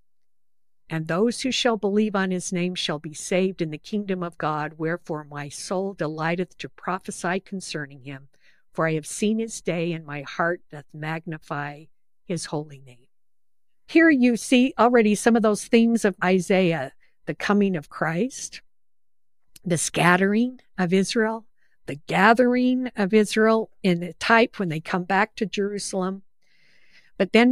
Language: English